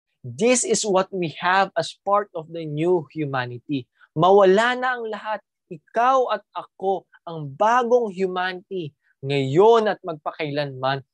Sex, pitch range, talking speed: male, 135-185 Hz, 130 wpm